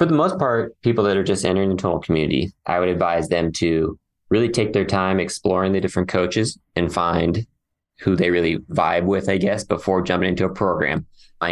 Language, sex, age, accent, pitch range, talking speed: English, male, 20-39, American, 85-95 Hz, 210 wpm